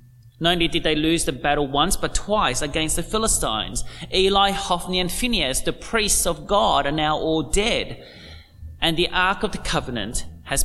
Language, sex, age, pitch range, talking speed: English, male, 30-49, 145-205 Hz, 180 wpm